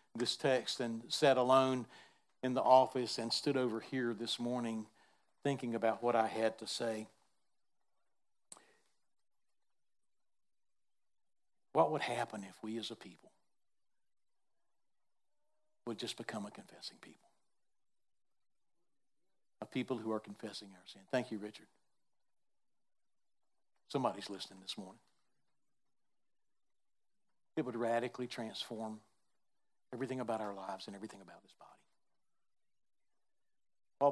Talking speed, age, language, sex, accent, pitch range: 110 wpm, 60-79, English, male, American, 110-130 Hz